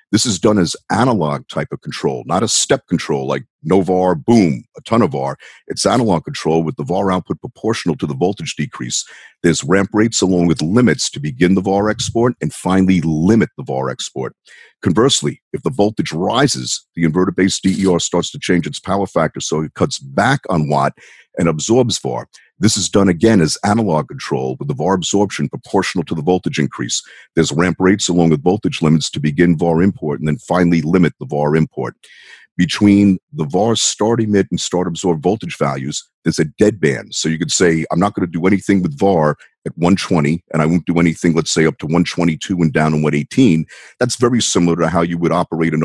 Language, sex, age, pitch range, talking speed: English, male, 50-69, 80-95 Hz, 205 wpm